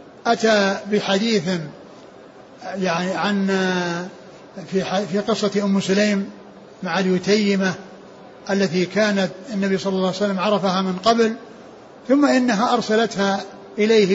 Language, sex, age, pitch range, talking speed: Arabic, male, 60-79, 195-225 Hz, 105 wpm